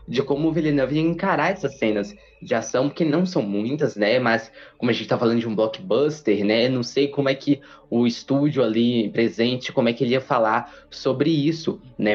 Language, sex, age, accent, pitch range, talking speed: Portuguese, male, 20-39, Brazilian, 115-150 Hz, 210 wpm